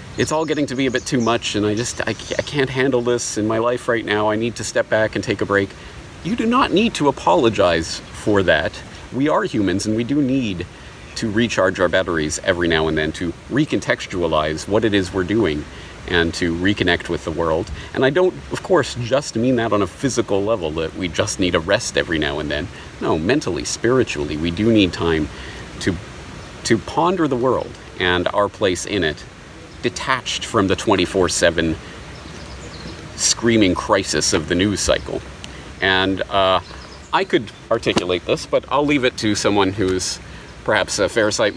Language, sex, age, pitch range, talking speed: English, male, 40-59, 85-125 Hz, 190 wpm